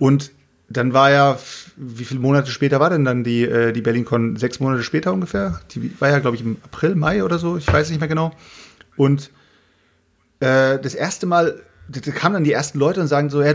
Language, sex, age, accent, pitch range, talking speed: German, male, 30-49, German, 135-165 Hz, 215 wpm